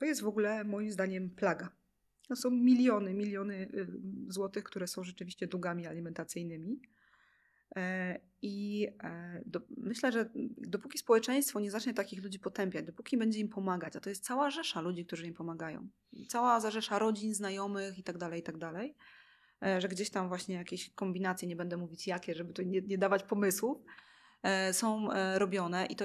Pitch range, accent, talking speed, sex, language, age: 180-230 Hz, native, 155 wpm, female, Polish, 20-39